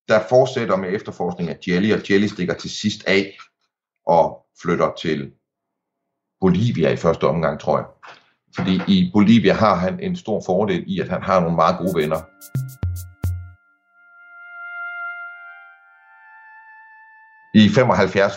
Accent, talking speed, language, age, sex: native, 125 wpm, Danish, 60-79, male